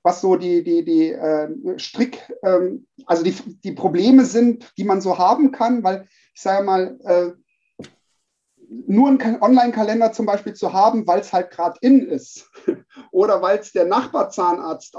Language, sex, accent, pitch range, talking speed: German, male, German, 185-260 Hz, 165 wpm